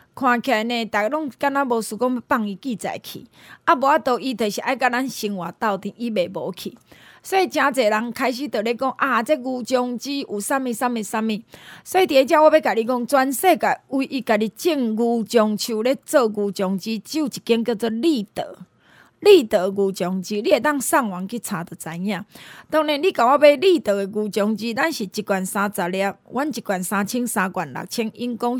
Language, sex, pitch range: Chinese, female, 205-270 Hz